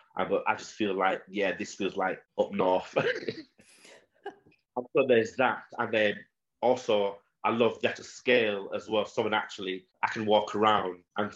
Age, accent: 30-49, British